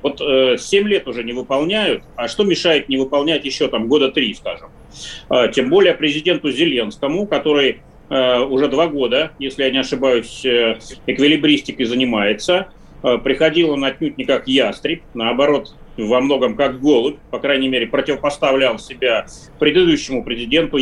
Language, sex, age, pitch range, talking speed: Russian, male, 30-49, 130-180 Hz, 150 wpm